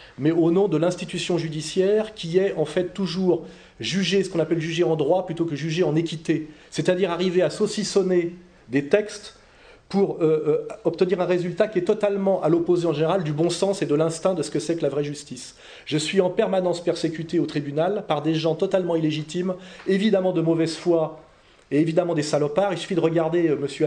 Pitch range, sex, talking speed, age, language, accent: 150-190 Hz, male, 205 wpm, 30-49, French, French